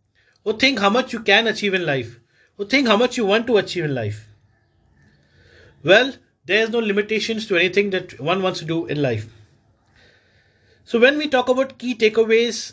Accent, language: Indian, English